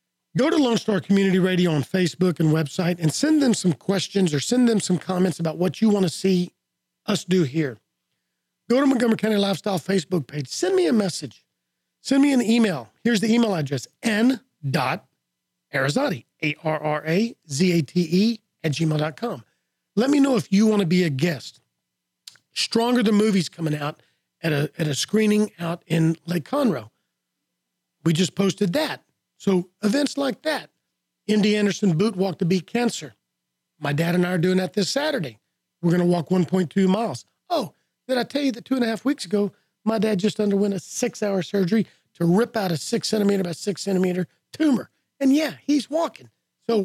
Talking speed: 175 wpm